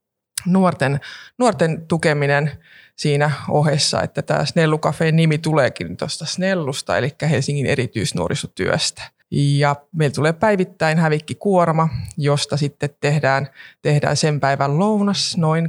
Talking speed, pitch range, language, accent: 105 wpm, 140-160 Hz, Finnish, native